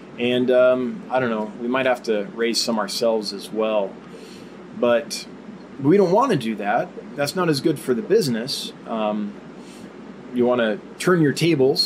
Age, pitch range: 20-39, 115-165 Hz